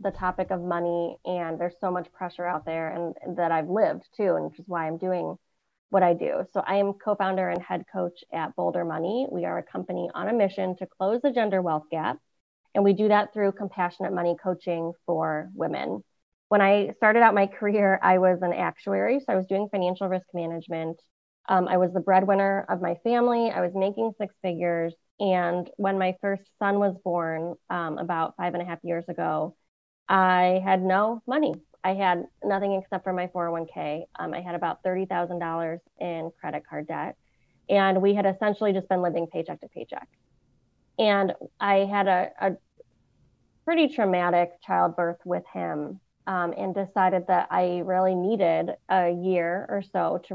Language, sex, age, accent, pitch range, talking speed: English, female, 20-39, American, 175-195 Hz, 185 wpm